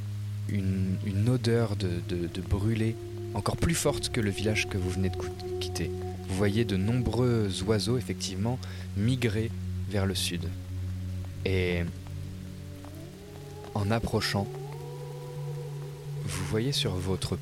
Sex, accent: male, French